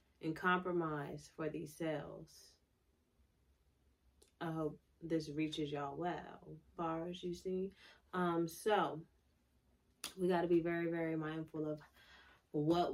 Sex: female